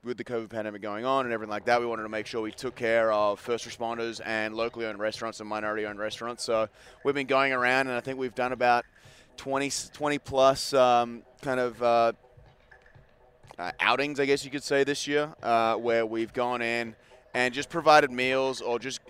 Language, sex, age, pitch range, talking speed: English, male, 30-49, 115-125 Hz, 210 wpm